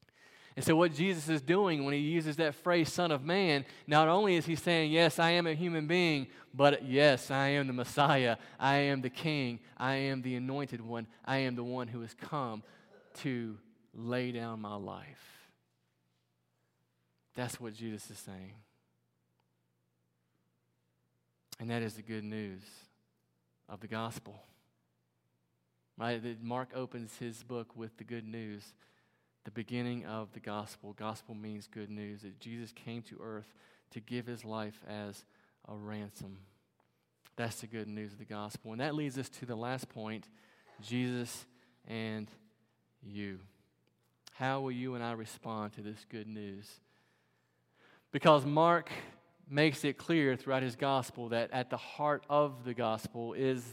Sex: male